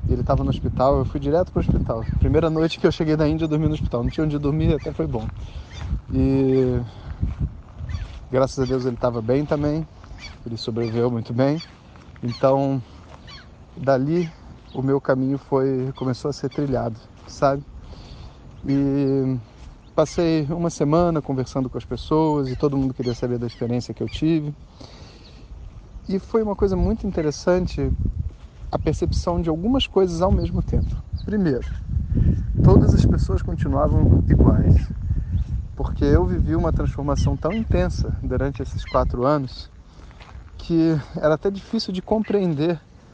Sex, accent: male, Brazilian